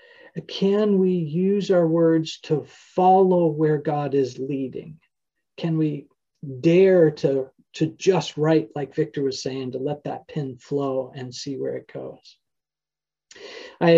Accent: American